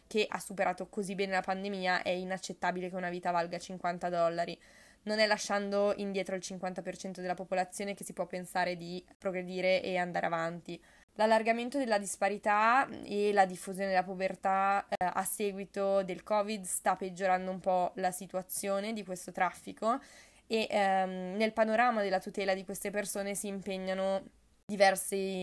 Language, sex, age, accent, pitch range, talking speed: Italian, female, 20-39, native, 180-200 Hz, 155 wpm